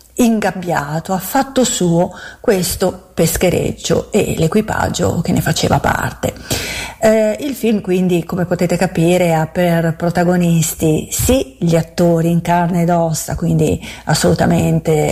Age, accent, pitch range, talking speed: 40-59, native, 170-205 Hz, 125 wpm